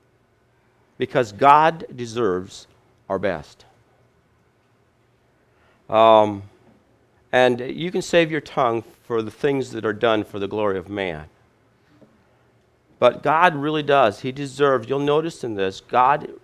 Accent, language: American, English